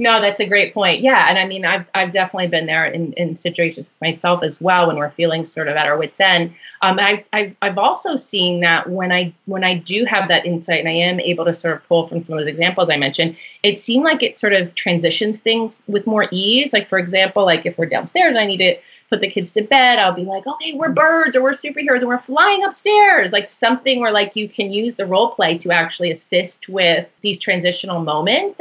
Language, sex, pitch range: English, female, 170-215 Hz